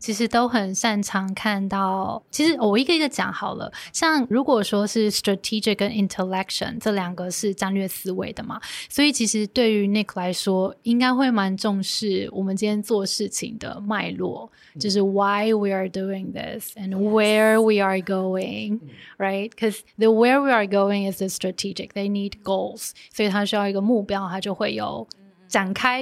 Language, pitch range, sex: Chinese, 195-225 Hz, female